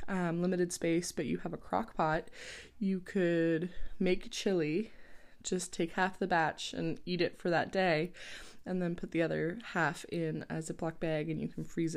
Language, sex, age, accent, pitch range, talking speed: English, female, 20-39, American, 155-190 Hz, 190 wpm